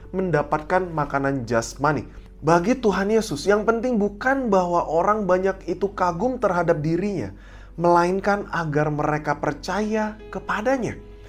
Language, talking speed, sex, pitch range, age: Indonesian, 115 wpm, male, 140-195 Hz, 20-39